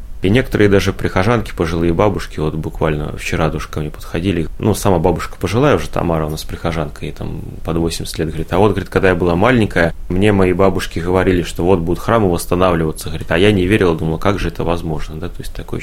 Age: 30-49